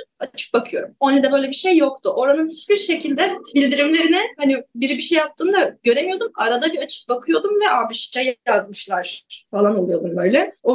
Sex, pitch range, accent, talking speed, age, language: female, 210-270 Hz, native, 165 wpm, 10-29, Turkish